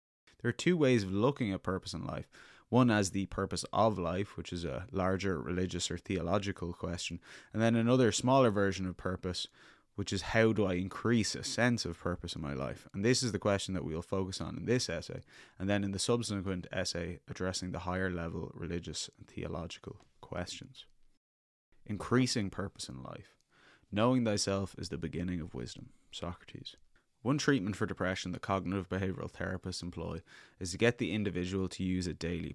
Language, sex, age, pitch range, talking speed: English, male, 20-39, 90-110 Hz, 185 wpm